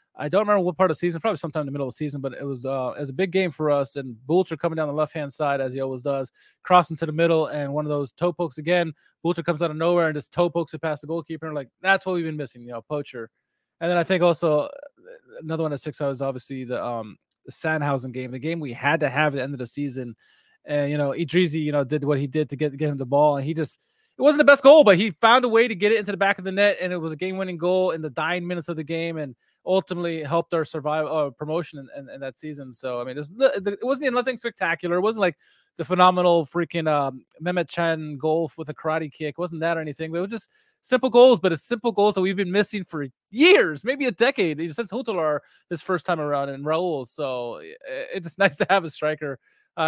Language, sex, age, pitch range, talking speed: English, male, 20-39, 145-185 Hz, 280 wpm